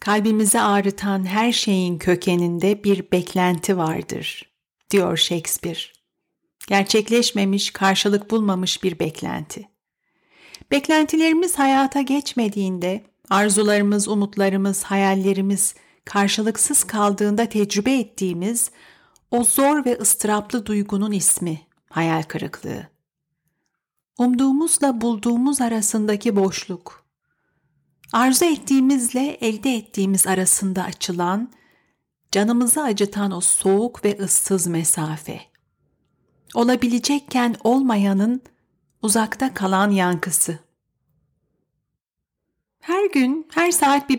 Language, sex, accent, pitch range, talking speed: Turkish, female, native, 185-240 Hz, 80 wpm